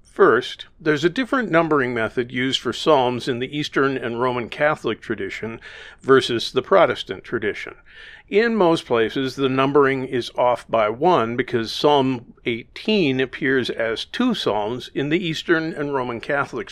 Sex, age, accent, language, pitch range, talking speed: male, 50-69, American, English, 120-150 Hz, 150 wpm